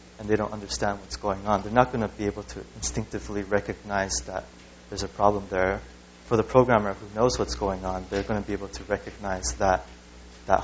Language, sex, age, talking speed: English, male, 20-39, 205 wpm